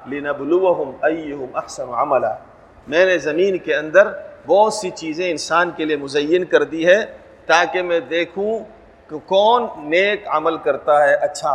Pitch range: 170-230 Hz